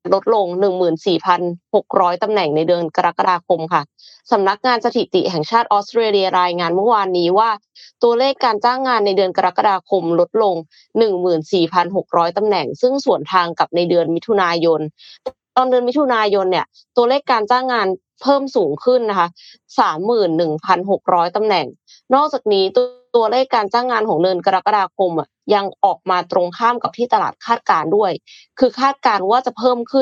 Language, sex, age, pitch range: Thai, female, 20-39, 180-240 Hz